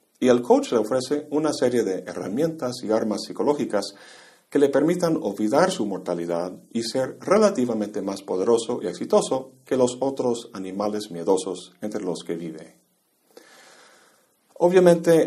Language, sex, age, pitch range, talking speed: Spanish, male, 50-69, 100-135 Hz, 140 wpm